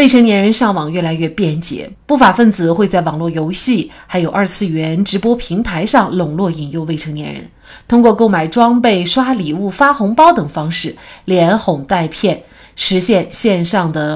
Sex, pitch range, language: female, 160-220 Hz, Chinese